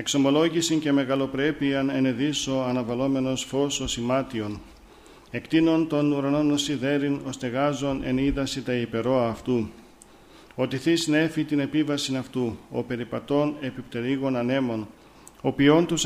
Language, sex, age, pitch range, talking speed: Greek, male, 50-69, 130-145 Hz, 110 wpm